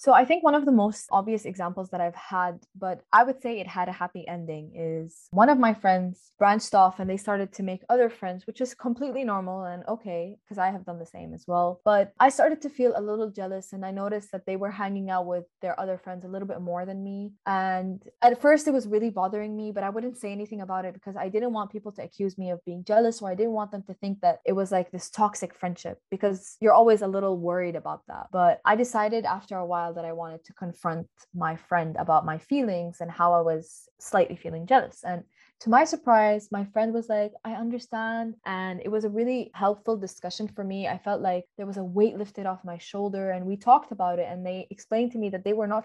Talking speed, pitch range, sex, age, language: 250 wpm, 180-220 Hz, female, 20-39, English